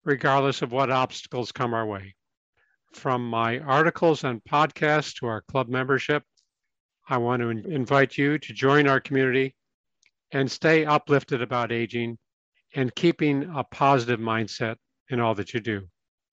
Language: English